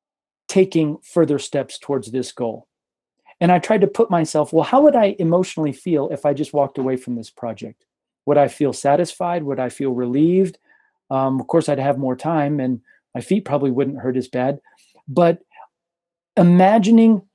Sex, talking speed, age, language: male, 175 wpm, 40-59, English